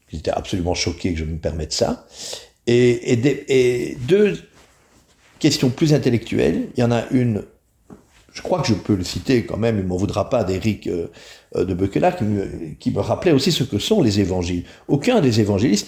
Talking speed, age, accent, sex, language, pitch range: 195 wpm, 50-69, French, male, French, 90-120 Hz